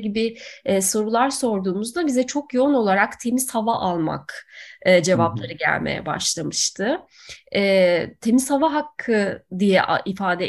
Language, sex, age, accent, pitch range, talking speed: Turkish, female, 30-49, native, 200-255 Hz, 115 wpm